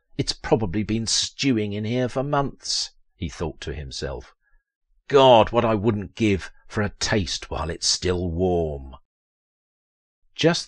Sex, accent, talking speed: male, British, 140 wpm